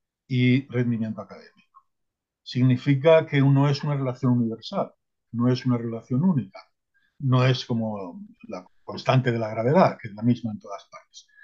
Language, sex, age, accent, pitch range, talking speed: Spanish, male, 50-69, Spanish, 120-150 Hz, 155 wpm